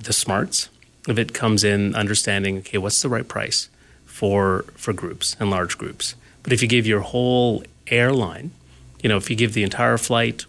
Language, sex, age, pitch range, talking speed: English, male, 30-49, 95-115 Hz, 190 wpm